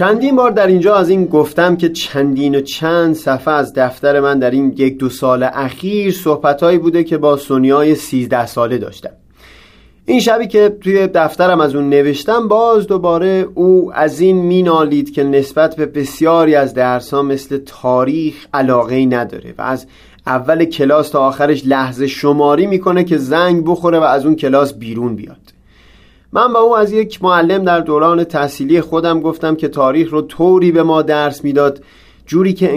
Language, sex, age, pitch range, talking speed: Persian, male, 30-49, 135-180 Hz, 170 wpm